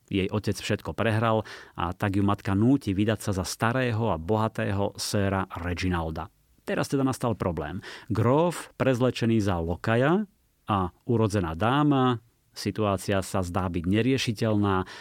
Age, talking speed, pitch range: 30-49, 130 wpm, 95-115 Hz